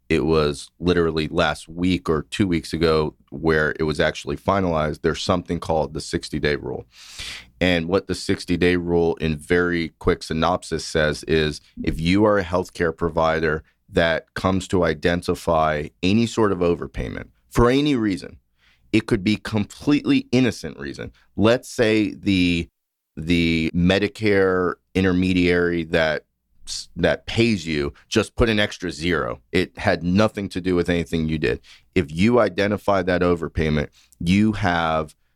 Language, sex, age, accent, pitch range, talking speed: English, male, 30-49, American, 80-95 Hz, 145 wpm